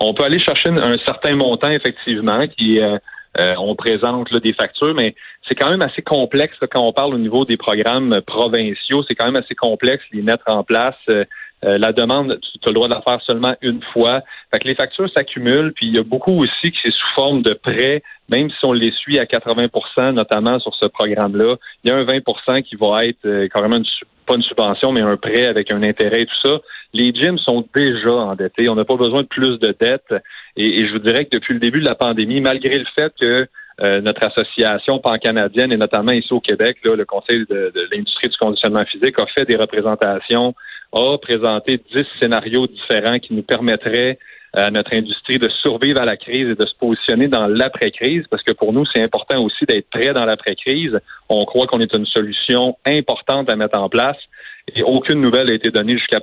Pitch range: 110-130 Hz